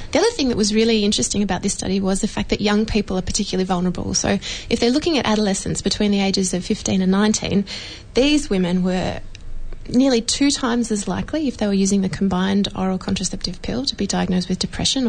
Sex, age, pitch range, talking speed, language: female, 20-39, 185-225 Hz, 215 wpm, English